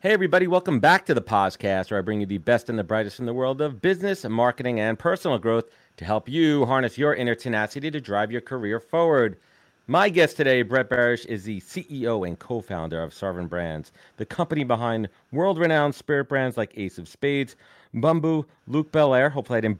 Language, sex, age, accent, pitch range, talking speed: English, male, 40-59, American, 105-140 Hz, 205 wpm